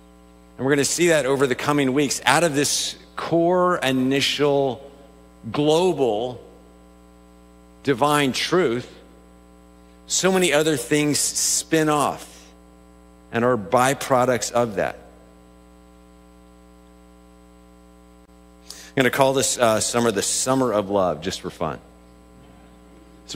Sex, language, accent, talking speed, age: male, English, American, 115 wpm, 50-69